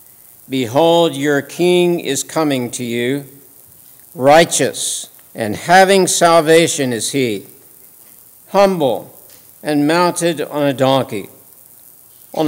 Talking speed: 95 wpm